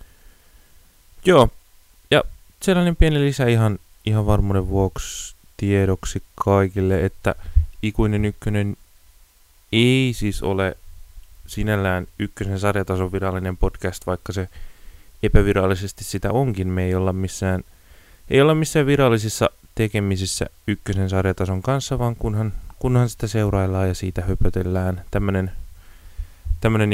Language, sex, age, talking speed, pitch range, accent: Finnish, male, 20-39, 110 wpm, 90-105 Hz, native